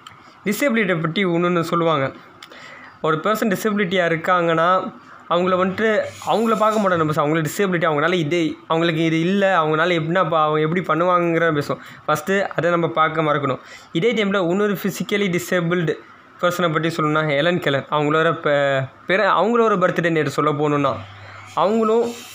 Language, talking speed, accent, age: Tamil, 135 wpm, native, 20-39